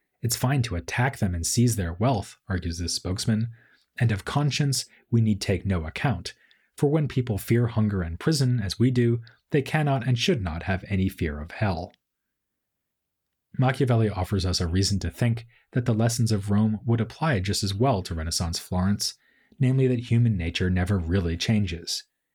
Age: 30-49